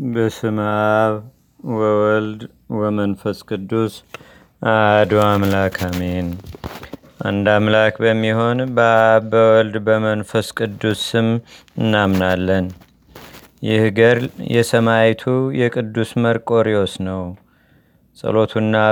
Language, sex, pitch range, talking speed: Amharic, male, 105-115 Hz, 65 wpm